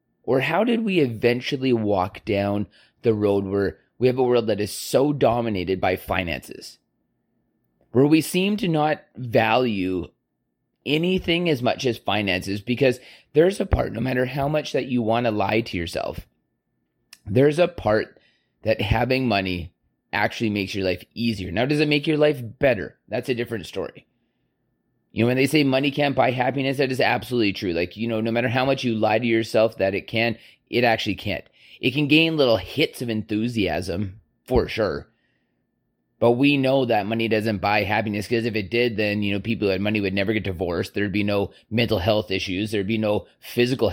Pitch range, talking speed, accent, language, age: 100-130 Hz, 190 wpm, American, English, 30-49